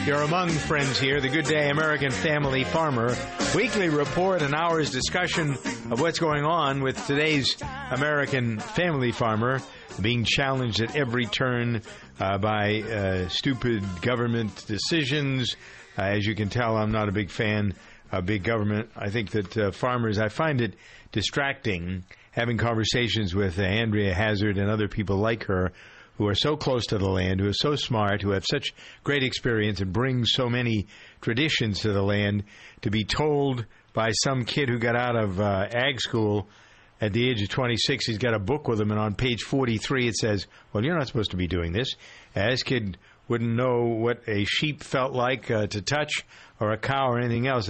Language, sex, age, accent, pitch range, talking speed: English, male, 50-69, American, 105-135 Hz, 185 wpm